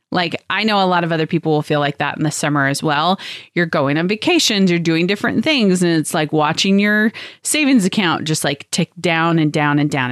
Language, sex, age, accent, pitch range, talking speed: English, female, 30-49, American, 155-205 Hz, 235 wpm